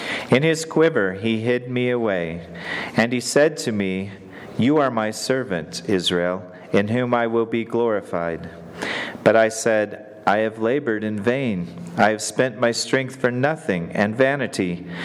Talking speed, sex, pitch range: 160 wpm, male, 100-125 Hz